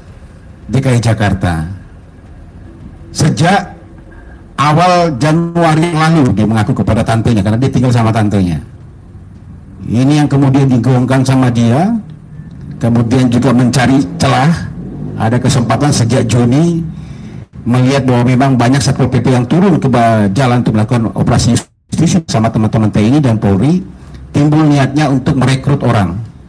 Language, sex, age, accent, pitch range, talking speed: Indonesian, male, 50-69, native, 100-135 Hz, 115 wpm